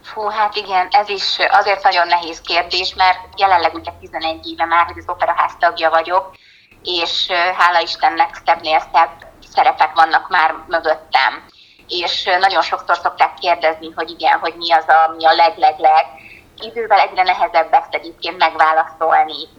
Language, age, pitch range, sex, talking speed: Hungarian, 20-39, 165-190 Hz, female, 150 wpm